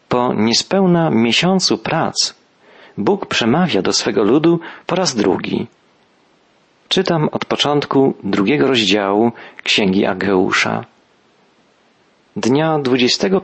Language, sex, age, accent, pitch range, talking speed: Polish, male, 40-59, native, 105-135 Hz, 95 wpm